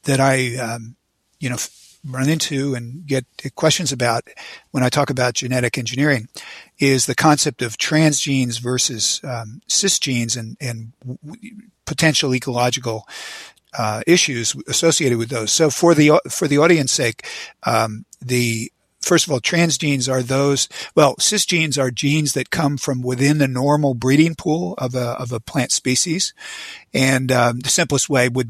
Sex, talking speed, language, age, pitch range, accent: male, 155 wpm, English, 50-69, 120-145 Hz, American